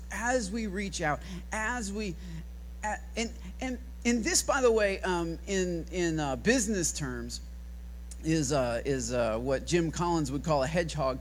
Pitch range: 140-180 Hz